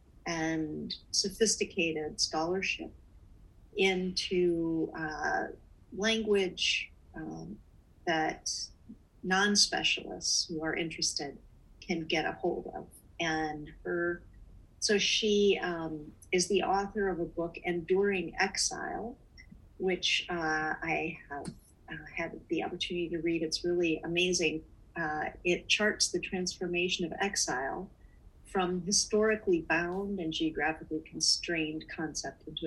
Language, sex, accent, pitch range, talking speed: English, female, American, 155-190 Hz, 105 wpm